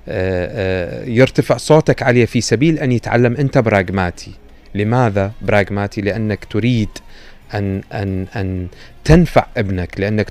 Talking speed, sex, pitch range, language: 110 wpm, male, 95-120 Hz, Arabic